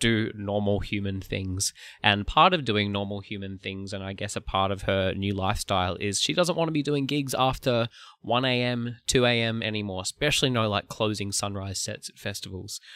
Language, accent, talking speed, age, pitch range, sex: English, Australian, 195 wpm, 10-29, 105-130 Hz, male